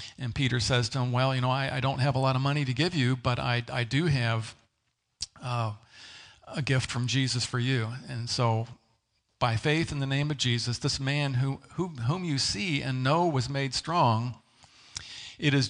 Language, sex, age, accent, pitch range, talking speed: English, male, 50-69, American, 115-140 Hz, 205 wpm